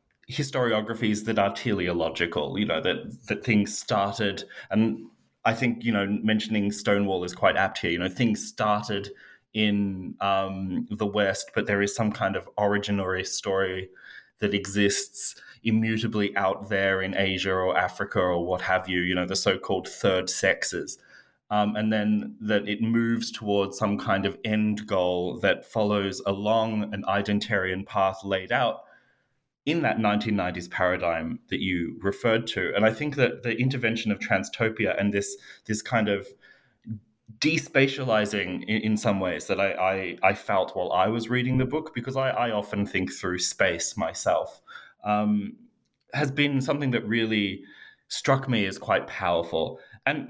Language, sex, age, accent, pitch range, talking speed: English, male, 20-39, Australian, 95-115 Hz, 160 wpm